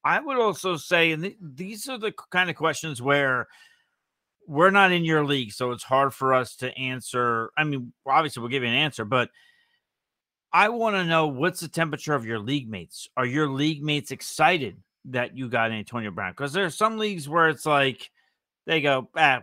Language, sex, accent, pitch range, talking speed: English, male, American, 130-165 Hz, 200 wpm